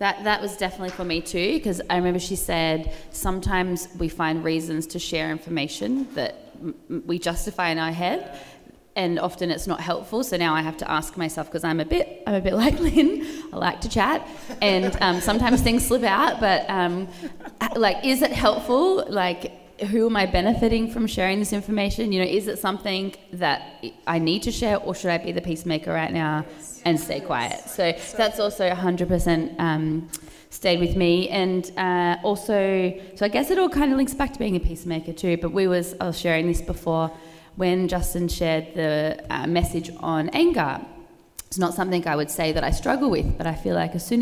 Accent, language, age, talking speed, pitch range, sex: Australian, English, 20-39, 205 wpm, 170-225 Hz, female